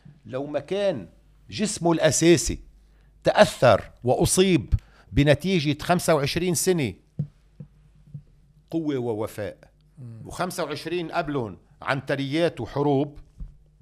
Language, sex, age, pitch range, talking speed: Arabic, male, 50-69, 110-155 Hz, 75 wpm